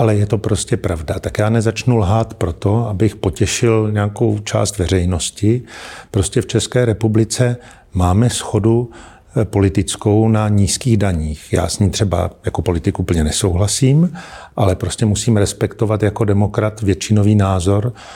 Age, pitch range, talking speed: 50-69, 95-115 Hz, 140 wpm